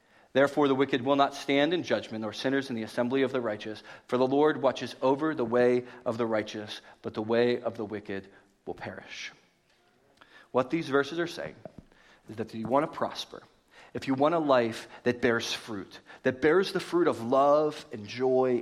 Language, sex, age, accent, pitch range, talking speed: English, male, 30-49, American, 120-165 Hz, 200 wpm